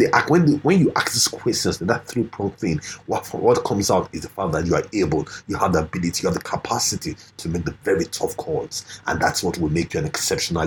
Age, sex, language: 30-49, male, English